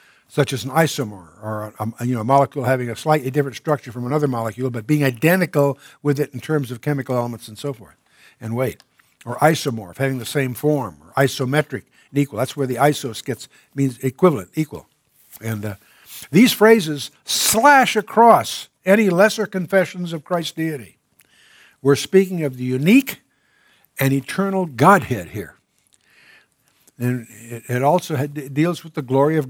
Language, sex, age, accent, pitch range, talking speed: English, male, 60-79, American, 125-170 Hz, 165 wpm